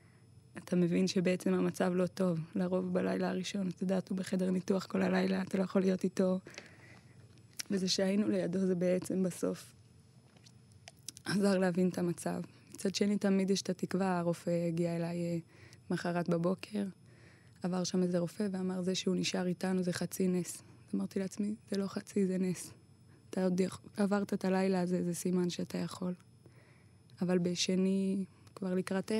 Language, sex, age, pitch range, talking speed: Hebrew, female, 20-39, 130-190 Hz, 155 wpm